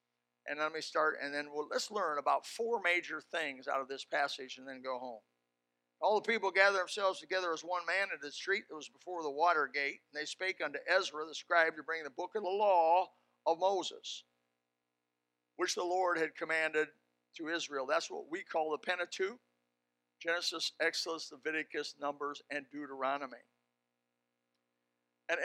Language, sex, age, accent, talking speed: English, male, 50-69, American, 175 wpm